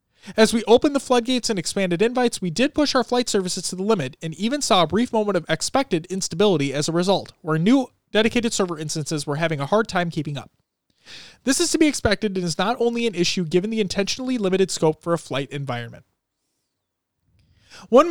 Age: 30-49